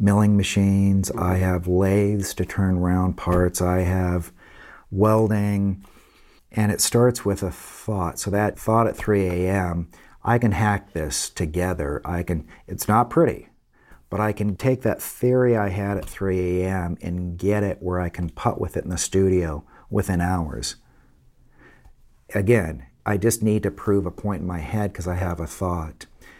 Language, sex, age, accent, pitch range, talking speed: English, male, 50-69, American, 90-105 Hz, 170 wpm